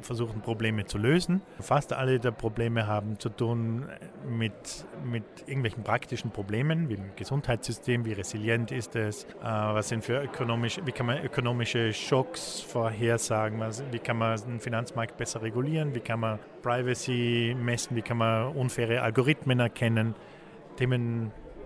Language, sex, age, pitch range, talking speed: English, male, 50-69, 110-125 Hz, 135 wpm